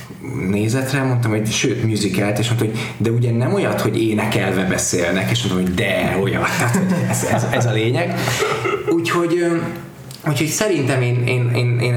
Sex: male